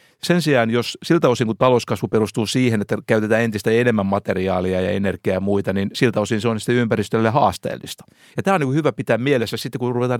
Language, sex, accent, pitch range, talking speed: Finnish, male, native, 105-130 Hz, 205 wpm